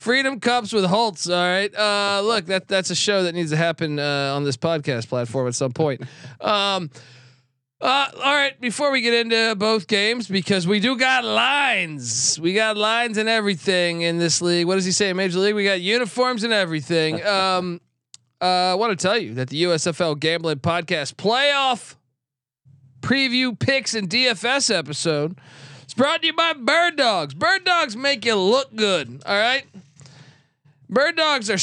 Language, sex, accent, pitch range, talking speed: English, male, American, 155-225 Hz, 180 wpm